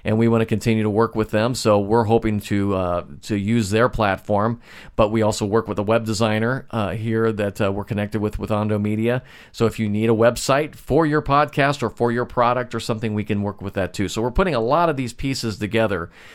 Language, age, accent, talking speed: English, 40-59, American, 240 wpm